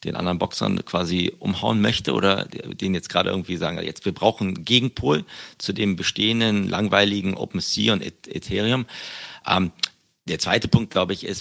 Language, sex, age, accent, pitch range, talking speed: German, male, 40-59, German, 85-100 Hz, 160 wpm